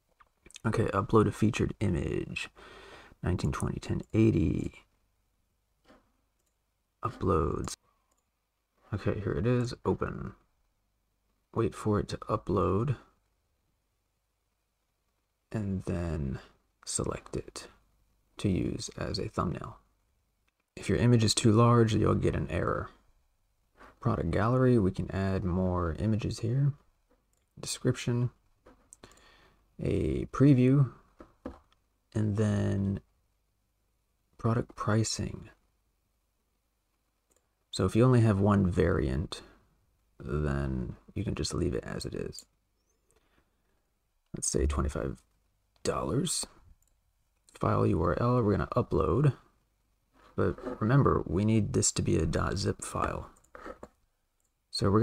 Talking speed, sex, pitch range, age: 95 wpm, male, 90-110 Hz, 30-49